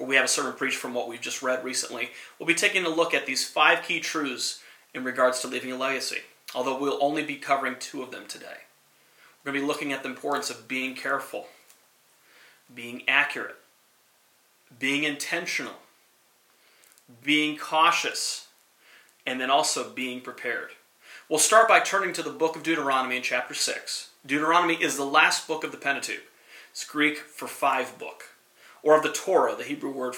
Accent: American